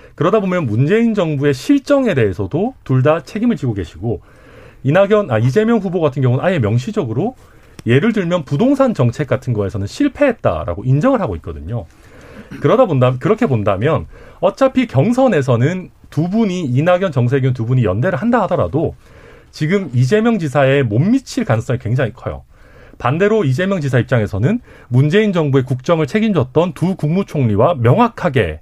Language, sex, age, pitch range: Korean, male, 40-59, 120-200 Hz